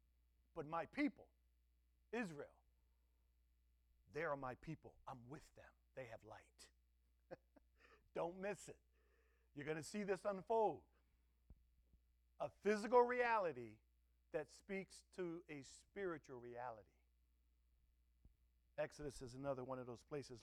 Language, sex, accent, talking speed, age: English, male, American, 115 wpm, 50-69